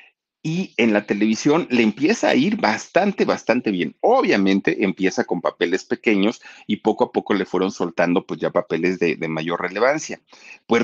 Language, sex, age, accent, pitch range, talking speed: Spanish, male, 40-59, Mexican, 90-125 Hz, 170 wpm